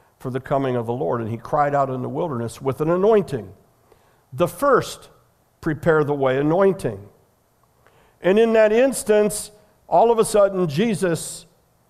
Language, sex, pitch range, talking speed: English, male, 130-180 Hz, 155 wpm